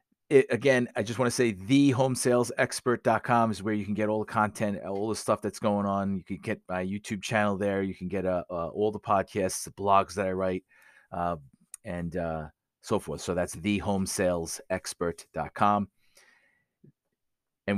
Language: English